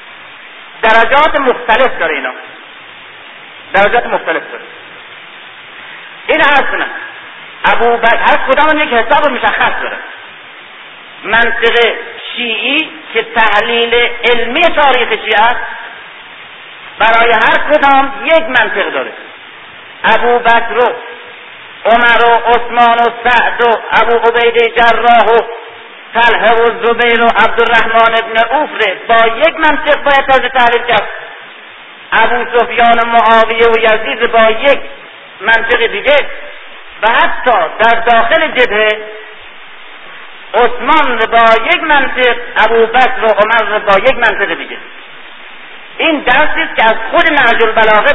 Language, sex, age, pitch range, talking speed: Persian, male, 50-69, 225-275 Hz, 115 wpm